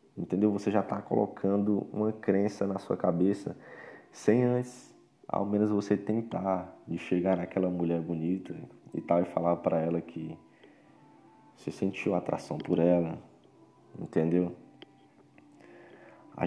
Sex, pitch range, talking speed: male, 90-105 Hz, 130 wpm